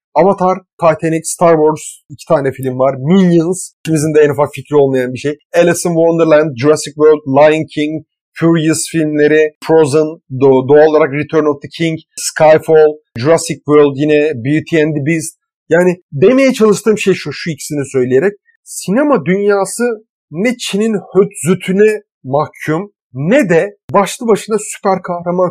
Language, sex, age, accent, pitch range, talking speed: Turkish, male, 40-59, native, 150-200 Hz, 145 wpm